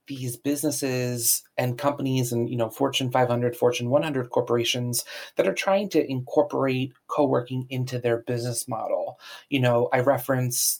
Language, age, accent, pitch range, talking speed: English, 30-49, American, 125-140 Hz, 145 wpm